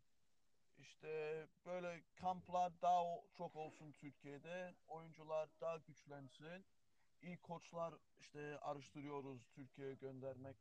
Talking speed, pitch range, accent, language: 90 wpm, 140-170 Hz, native, Turkish